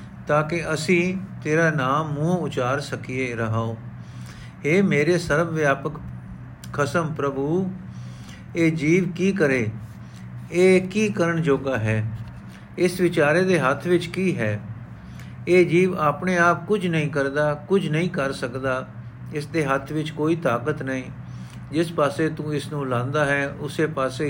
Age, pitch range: 50-69, 125-170 Hz